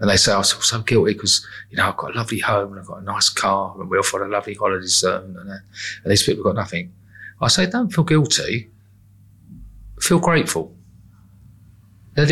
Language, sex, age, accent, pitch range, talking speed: English, male, 40-59, British, 95-105 Hz, 220 wpm